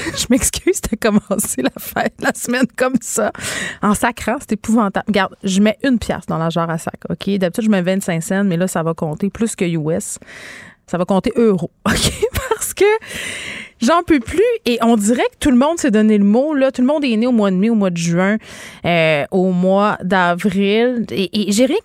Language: French